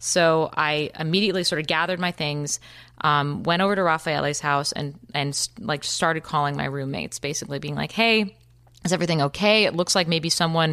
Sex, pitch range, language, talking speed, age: female, 145-180 Hz, English, 190 wpm, 20-39